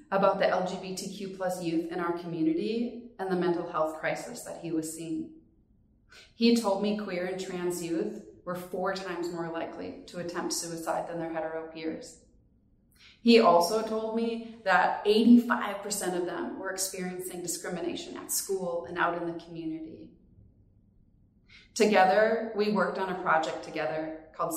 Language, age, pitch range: English, 30-49, 165-195 Hz